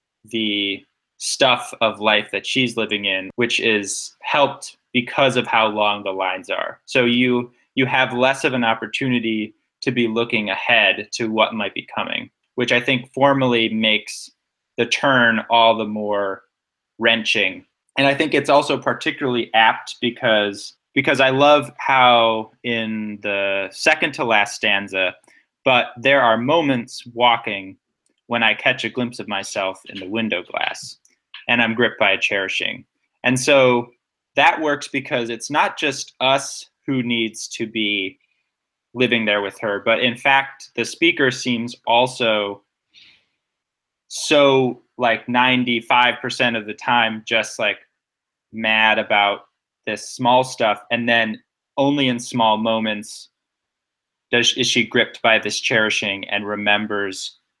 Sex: male